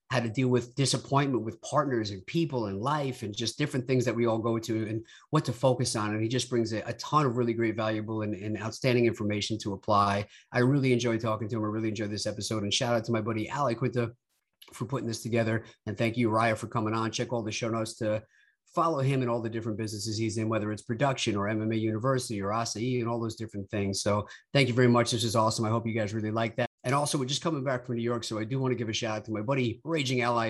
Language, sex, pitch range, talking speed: English, male, 110-125 Hz, 270 wpm